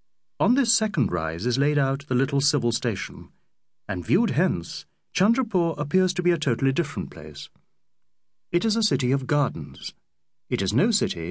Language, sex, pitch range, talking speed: English, male, 115-160 Hz, 170 wpm